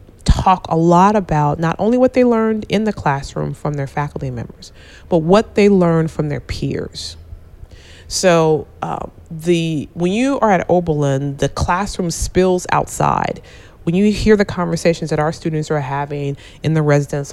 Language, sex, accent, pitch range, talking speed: English, female, American, 140-185 Hz, 165 wpm